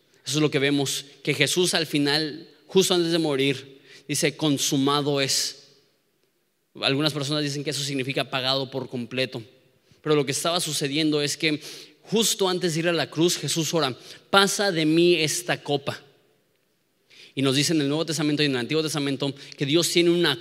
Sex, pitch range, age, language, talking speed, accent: male, 140-170 Hz, 20-39, Spanish, 180 wpm, Mexican